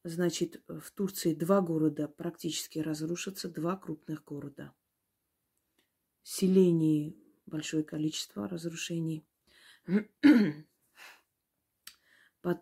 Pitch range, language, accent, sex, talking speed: 160-185 Hz, Russian, native, female, 70 wpm